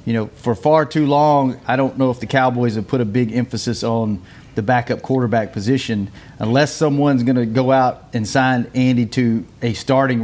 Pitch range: 120-145 Hz